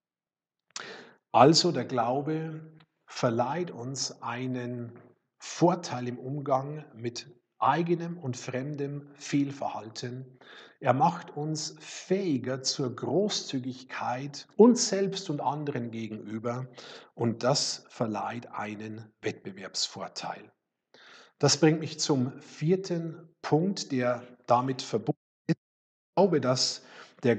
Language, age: German, 50-69